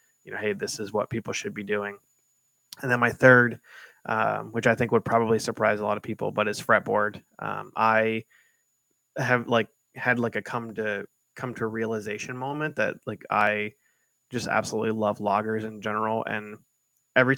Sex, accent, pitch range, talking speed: male, American, 105-125 Hz, 180 wpm